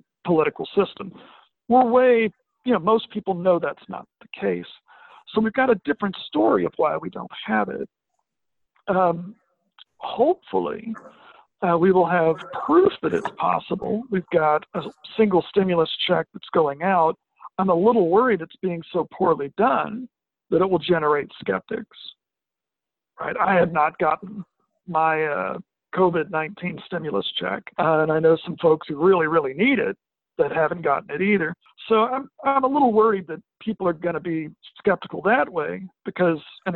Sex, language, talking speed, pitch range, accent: male, English, 165 wpm, 160-215 Hz, American